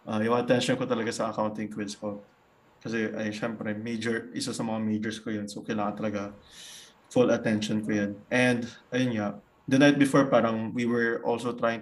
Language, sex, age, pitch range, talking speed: Filipino, male, 20-39, 110-130 Hz, 200 wpm